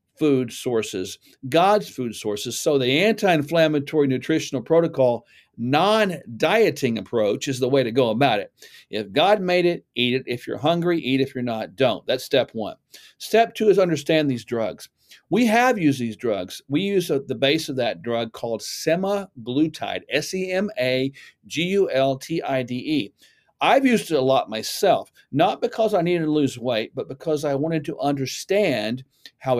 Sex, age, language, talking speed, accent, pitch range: male, 50-69, English, 155 wpm, American, 130-190 Hz